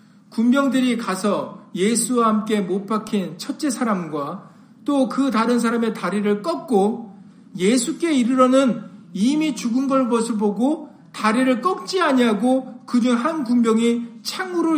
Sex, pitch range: male, 225-310 Hz